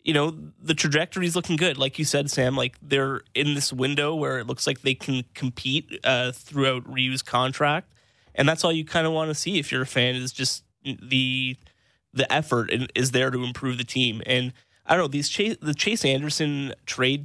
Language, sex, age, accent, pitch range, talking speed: English, male, 20-39, American, 130-150 Hz, 210 wpm